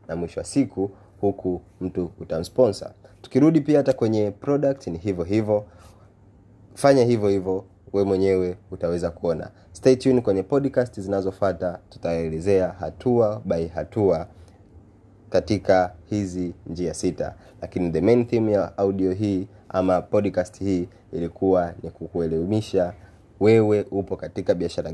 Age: 30-49